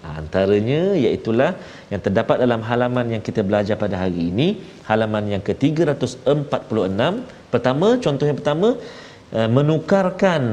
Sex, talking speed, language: male, 120 wpm, Malayalam